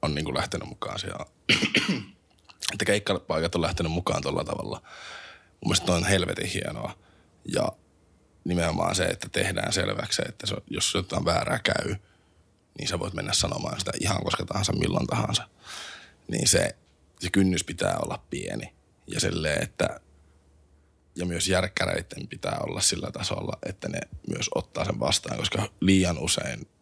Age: 20-39